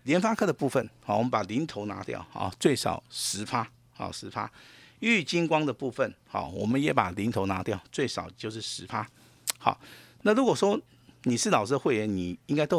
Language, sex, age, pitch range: Chinese, male, 50-69, 105-135 Hz